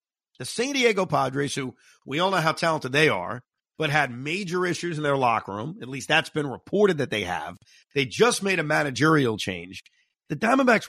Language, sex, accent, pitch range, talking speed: English, male, American, 140-200 Hz, 200 wpm